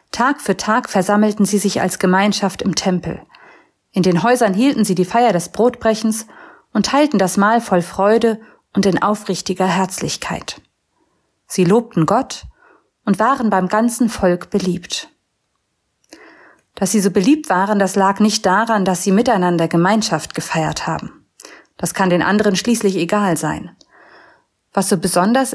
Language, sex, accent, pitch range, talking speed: German, female, German, 190-225 Hz, 150 wpm